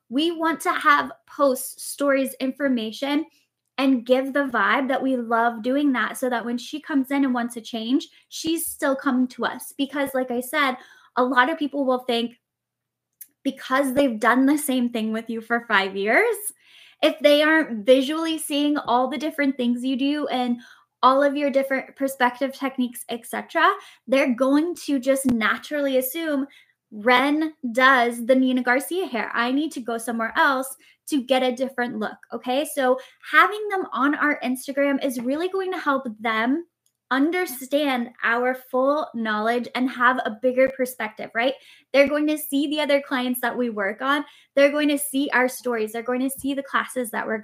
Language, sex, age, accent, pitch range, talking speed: English, female, 10-29, American, 240-290 Hz, 180 wpm